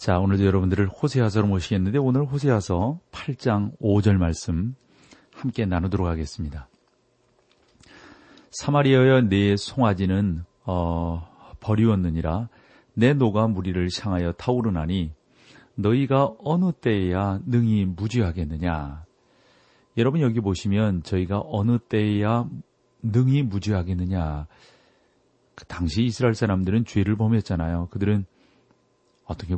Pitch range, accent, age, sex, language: 90-125 Hz, native, 40-59, male, Korean